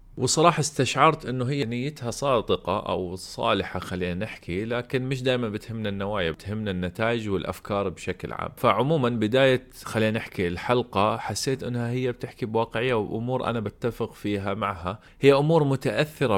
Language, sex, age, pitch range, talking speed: Arabic, male, 30-49, 95-125 Hz, 140 wpm